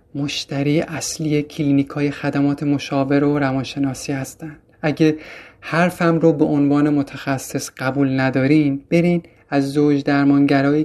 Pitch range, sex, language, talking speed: 145-175 Hz, male, Persian, 110 wpm